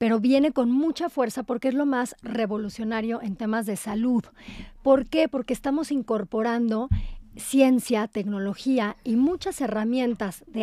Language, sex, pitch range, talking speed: Spanish, female, 215-260 Hz, 140 wpm